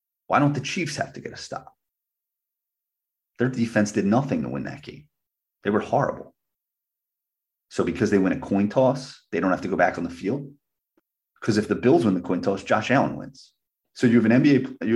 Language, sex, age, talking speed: English, male, 30-49, 215 wpm